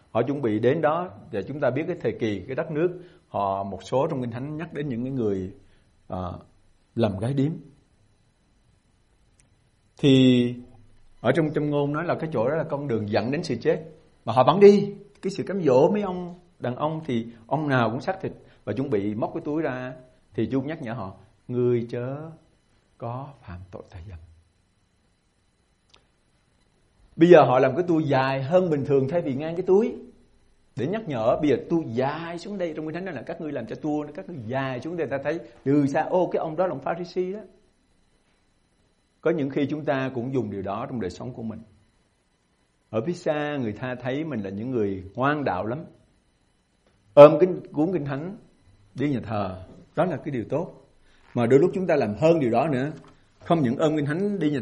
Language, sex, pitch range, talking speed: Vietnamese, male, 110-155 Hz, 210 wpm